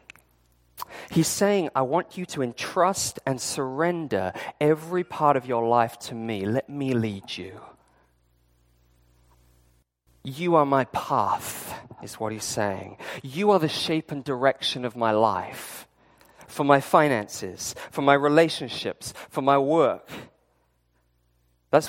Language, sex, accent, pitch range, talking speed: English, male, British, 85-140 Hz, 130 wpm